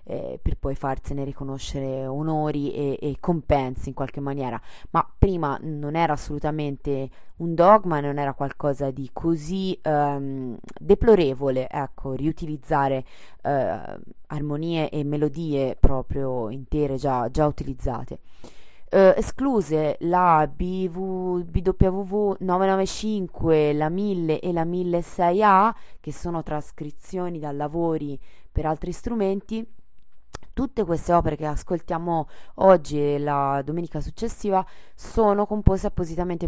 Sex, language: female, Italian